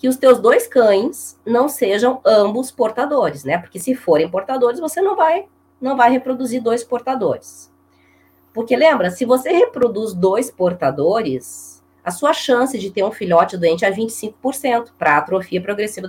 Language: Portuguese